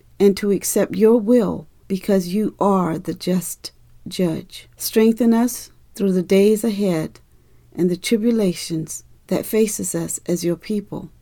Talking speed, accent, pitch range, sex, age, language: 140 wpm, American, 175-210 Hz, female, 50-69, English